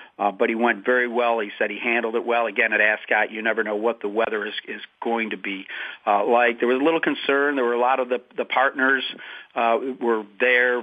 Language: English